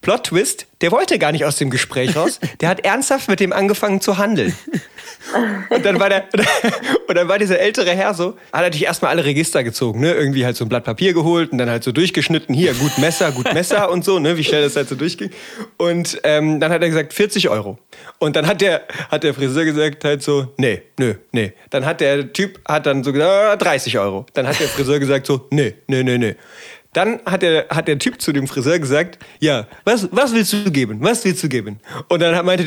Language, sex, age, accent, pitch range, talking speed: German, male, 30-49, German, 145-195 Hz, 235 wpm